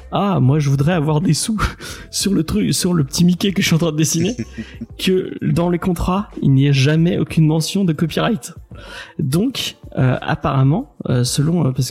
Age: 30-49